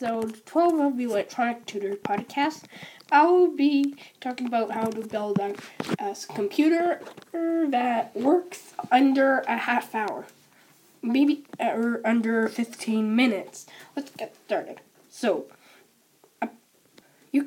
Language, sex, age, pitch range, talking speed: English, female, 10-29, 220-295 Hz, 105 wpm